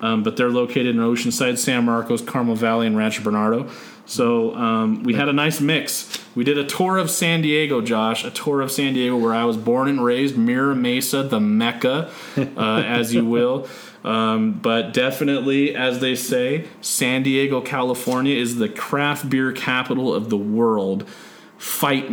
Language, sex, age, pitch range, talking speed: English, male, 30-49, 120-160 Hz, 175 wpm